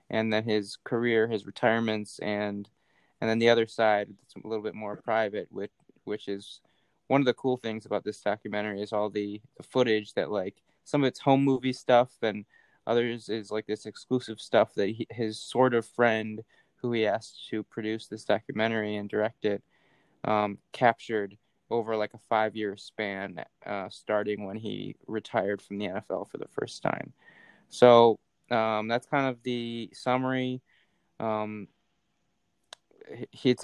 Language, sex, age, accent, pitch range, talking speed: English, male, 20-39, American, 105-120 Hz, 170 wpm